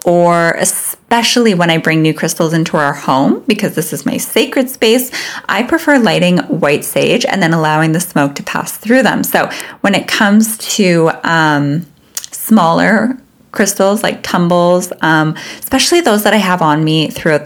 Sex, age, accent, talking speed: female, 20-39, American, 170 wpm